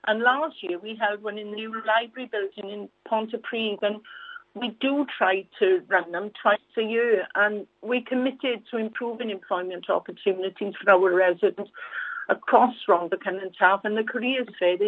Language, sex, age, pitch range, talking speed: English, female, 60-79, 205-245 Hz, 165 wpm